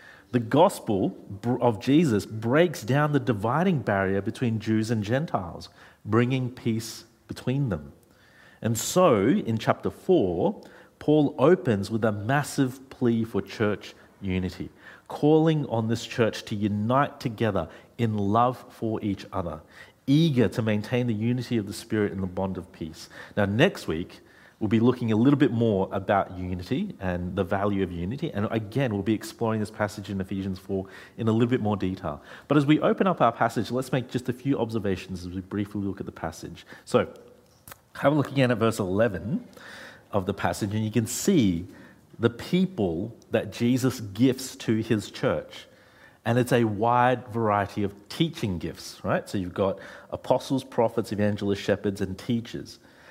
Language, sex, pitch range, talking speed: English, male, 100-125 Hz, 170 wpm